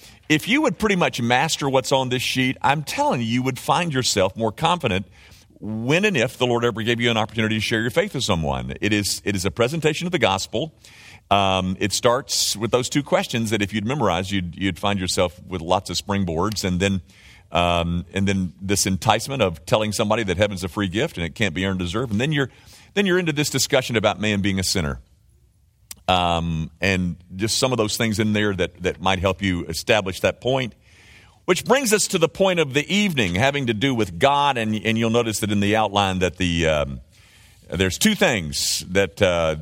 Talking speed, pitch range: 225 wpm, 95-125 Hz